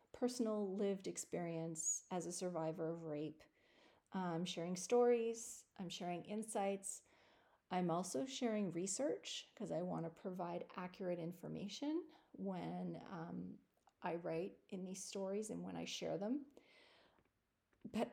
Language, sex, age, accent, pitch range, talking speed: English, female, 40-59, American, 185-220 Hz, 125 wpm